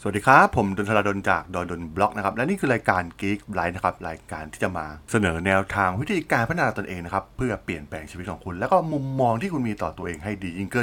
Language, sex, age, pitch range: Thai, male, 20-39, 95-125 Hz